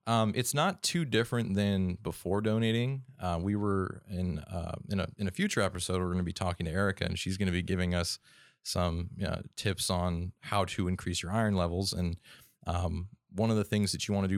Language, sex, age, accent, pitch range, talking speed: English, male, 30-49, American, 90-105 Hz, 220 wpm